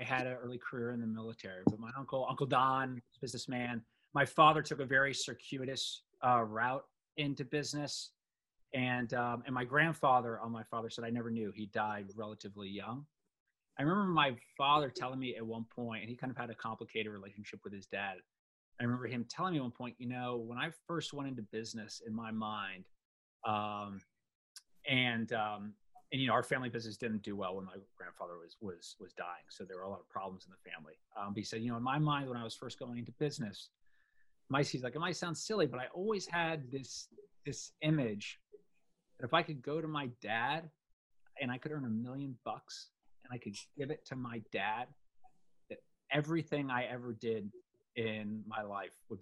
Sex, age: male, 30-49